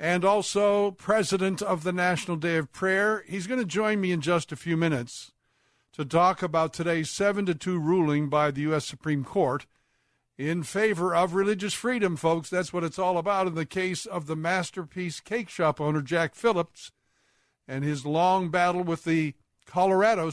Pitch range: 150-190 Hz